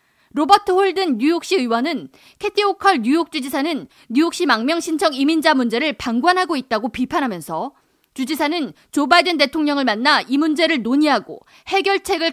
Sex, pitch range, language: female, 260-350 Hz, Korean